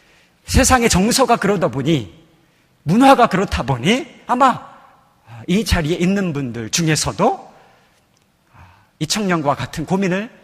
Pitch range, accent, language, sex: 145-220 Hz, native, Korean, male